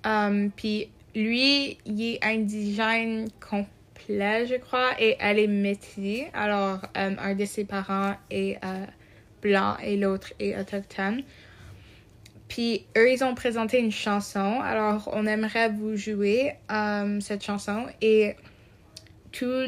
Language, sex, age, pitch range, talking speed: English, female, 20-39, 200-220 Hz, 130 wpm